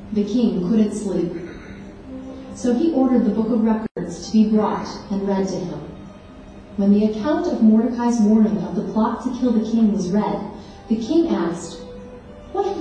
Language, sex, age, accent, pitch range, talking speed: English, female, 30-49, American, 210-320 Hz, 180 wpm